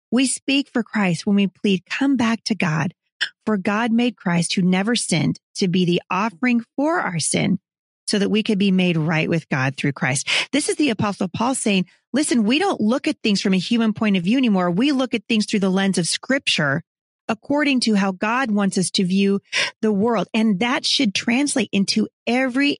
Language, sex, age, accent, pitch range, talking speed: English, female, 30-49, American, 185-235 Hz, 210 wpm